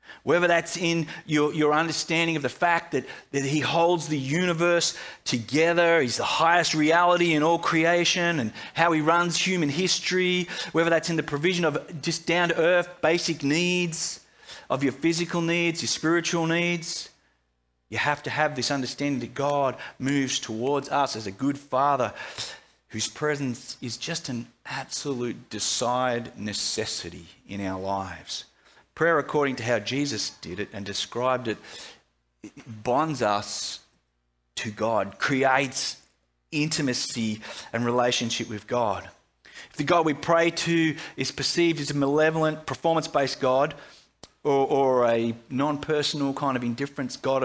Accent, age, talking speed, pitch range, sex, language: Australian, 30-49, 145 wpm, 115-165 Hz, male, English